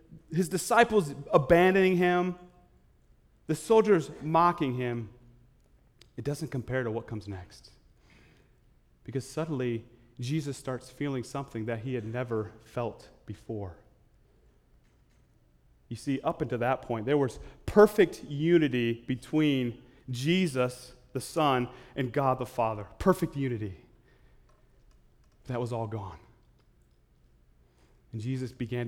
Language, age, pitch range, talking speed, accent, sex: English, 30-49, 115-160 Hz, 110 wpm, American, male